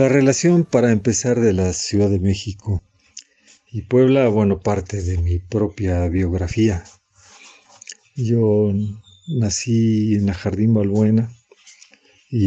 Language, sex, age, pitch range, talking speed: Spanish, male, 50-69, 100-120 Hz, 115 wpm